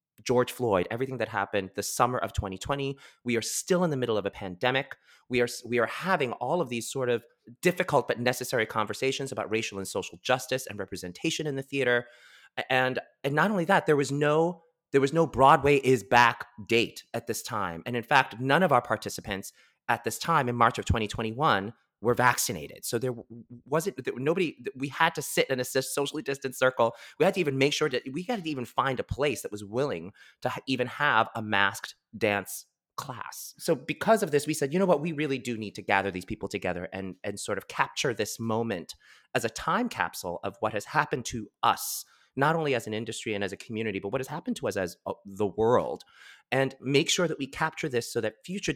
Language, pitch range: English, 110-145 Hz